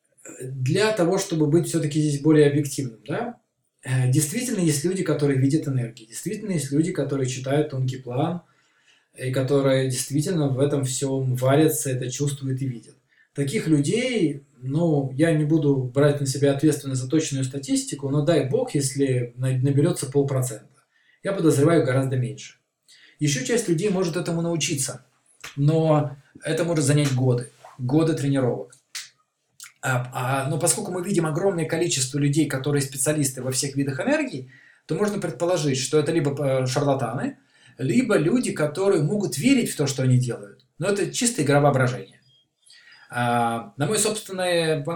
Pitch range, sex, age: 130-165 Hz, male, 20-39